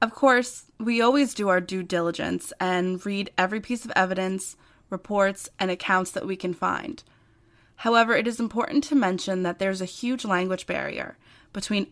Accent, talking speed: American, 170 wpm